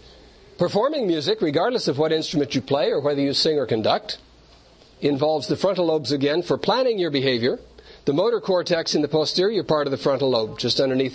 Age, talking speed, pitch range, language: 60-79, 195 wpm, 125-170 Hz, English